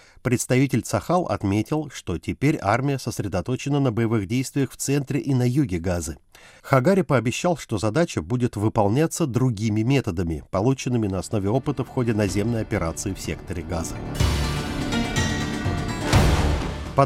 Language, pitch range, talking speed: Russian, 105-140 Hz, 125 wpm